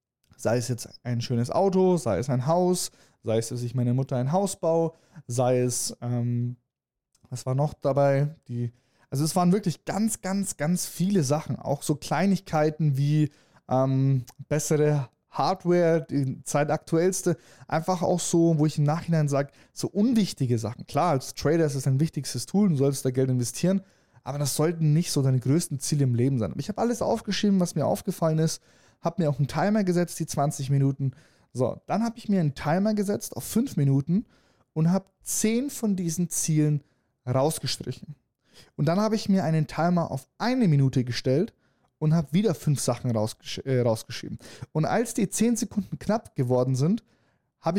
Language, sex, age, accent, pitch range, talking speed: German, male, 20-39, German, 135-180 Hz, 180 wpm